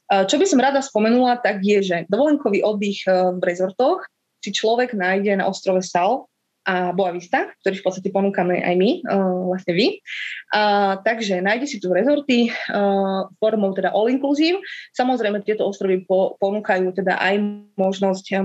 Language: Slovak